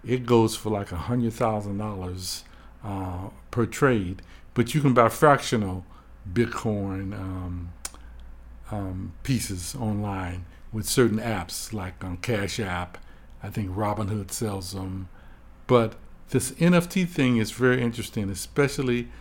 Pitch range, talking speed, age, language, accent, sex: 95-120 Hz, 110 wpm, 60-79, English, American, male